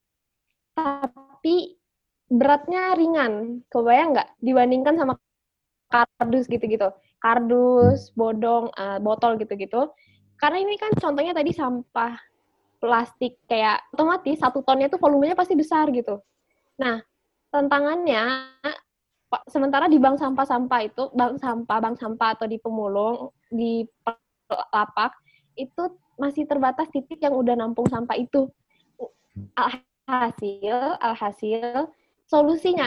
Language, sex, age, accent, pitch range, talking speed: Indonesian, female, 20-39, native, 230-285 Hz, 110 wpm